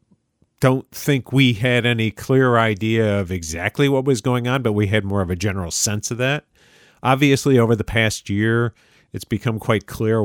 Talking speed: 185 wpm